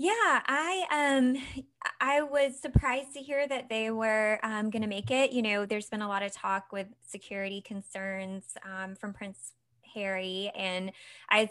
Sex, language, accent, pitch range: female, English, American, 190-240 Hz